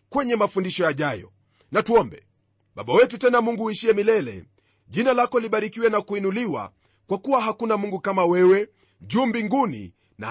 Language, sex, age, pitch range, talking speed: Swahili, male, 40-59, 190-245 Hz, 145 wpm